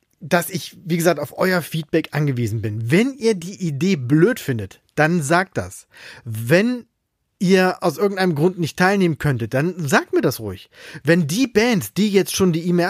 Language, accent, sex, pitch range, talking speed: German, German, male, 145-195 Hz, 180 wpm